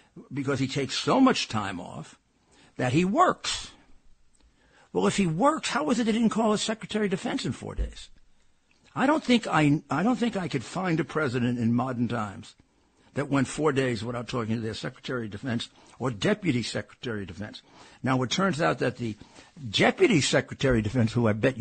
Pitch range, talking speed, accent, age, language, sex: 120-160 Hz, 195 wpm, American, 60-79, English, male